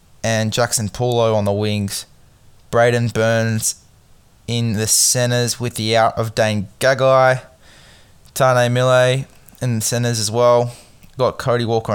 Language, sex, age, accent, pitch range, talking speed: English, male, 20-39, Australian, 100-120 Hz, 135 wpm